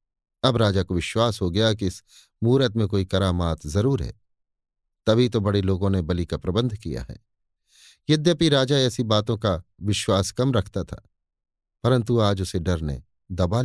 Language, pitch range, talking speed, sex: Hindi, 95-125 Hz, 170 wpm, male